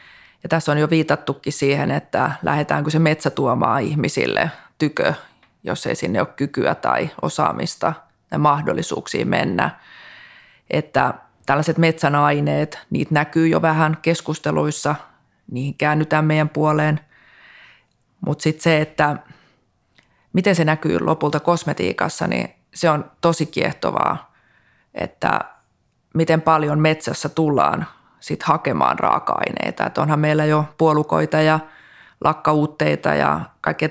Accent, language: native, Finnish